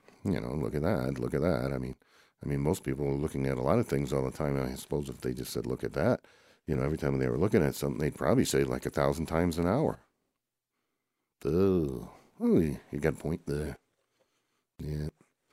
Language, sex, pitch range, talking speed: English, male, 65-75 Hz, 230 wpm